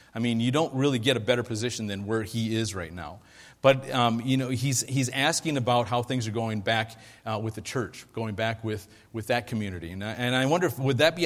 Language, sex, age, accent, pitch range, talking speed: English, male, 40-59, American, 110-135 Hz, 250 wpm